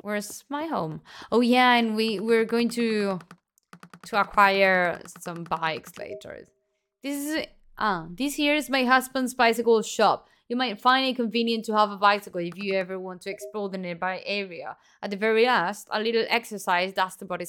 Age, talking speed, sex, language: 20-39, 180 wpm, female, Italian